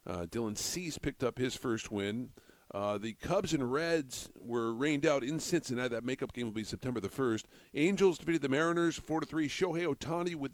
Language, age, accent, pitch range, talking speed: English, 50-69, American, 115-150 Hz, 205 wpm